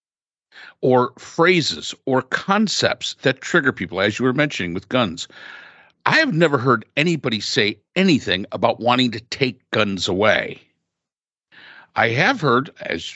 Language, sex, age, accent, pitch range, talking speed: English, male, 50-69, American, 110-140 Hz, 135 wpm